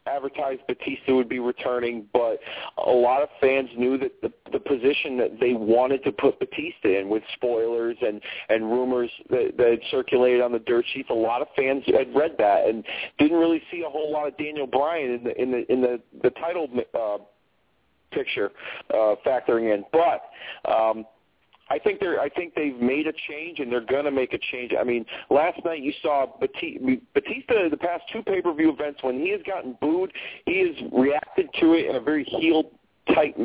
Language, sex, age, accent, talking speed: English, male, 40-59, American, 200 wpm